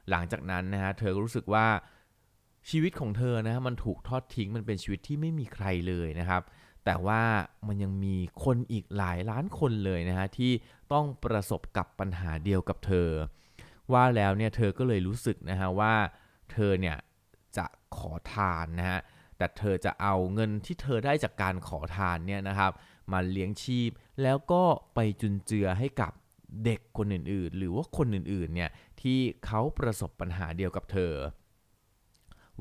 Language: Thai